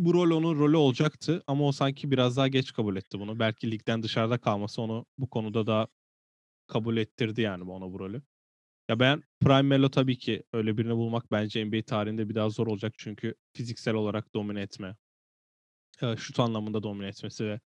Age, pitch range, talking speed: 10-29, 105-130 Hz, 180 wpm